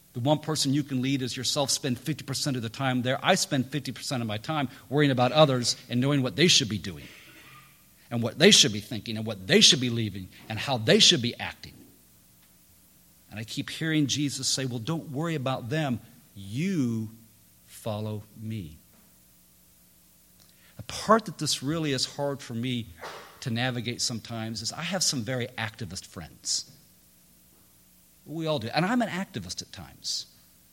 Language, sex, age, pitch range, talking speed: English, male, 50-69, 110-150 Hz, 175 wpm